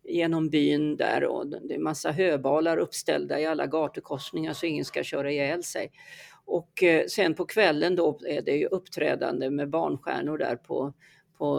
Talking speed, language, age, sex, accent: 165 wpm, Swedish, 50-69, female, native